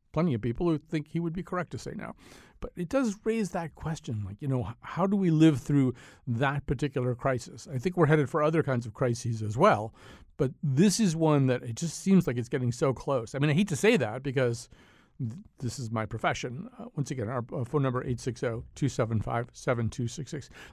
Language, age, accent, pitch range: English, 50-69, American, 130-180 Hz